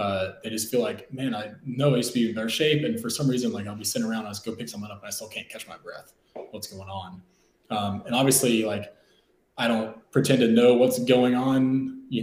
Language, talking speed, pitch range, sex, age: English, 260 wpm, 110-125 Hz, male, 20-39